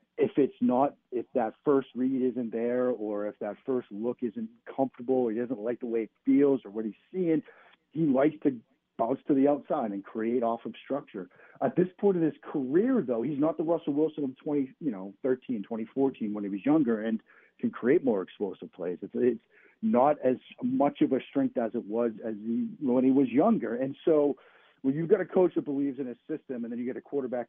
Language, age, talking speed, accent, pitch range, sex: English, 50-69, 225 wpm, American, 120-170 Hz, male